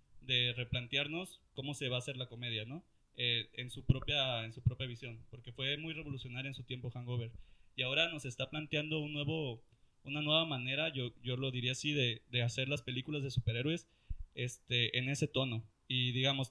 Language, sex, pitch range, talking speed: Spanish, male, 125-145 Hz, 195 wpm